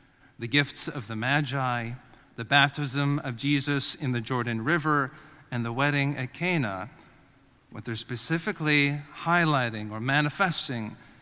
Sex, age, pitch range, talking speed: male, 50-69, 130-155 Hz, 130 wpm